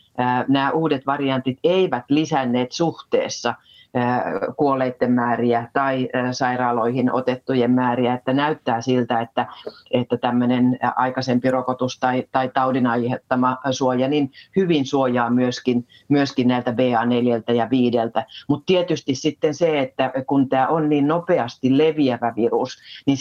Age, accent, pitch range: 40-59, native, 120-135 Hz